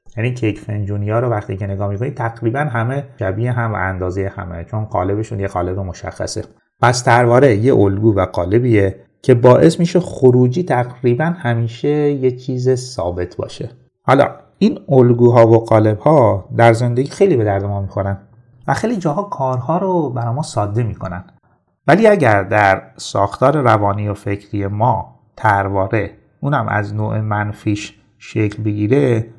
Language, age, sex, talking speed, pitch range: Persian, 30-49, male, 150 wpm, 100-135 Hz